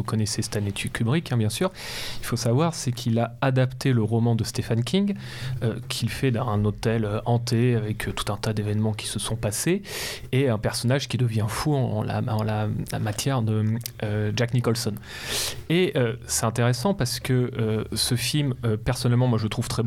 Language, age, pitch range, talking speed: French, 30-49, 115-130 Hz, 210 wpm